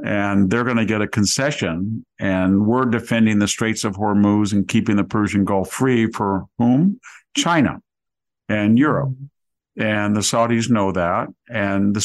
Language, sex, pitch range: English, male, 100-120 Hz